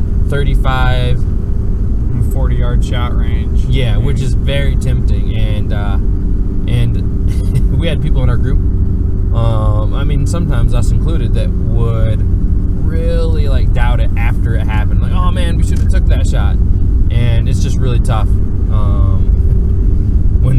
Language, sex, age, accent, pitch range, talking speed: English, male, 20-39, American, 90-105 Hz, 145 wpm